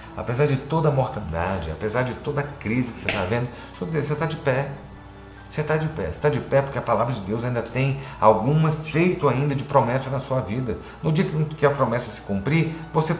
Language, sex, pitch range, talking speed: Portuguese, male, 115-155 Hz, 235 wpm